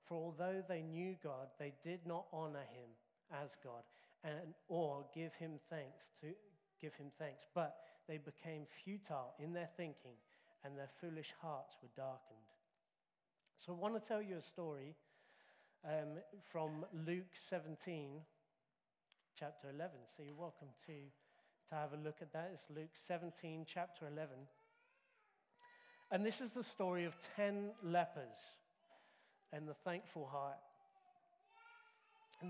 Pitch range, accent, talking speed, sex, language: 150-185 Hz, British, 140 wpm, male, English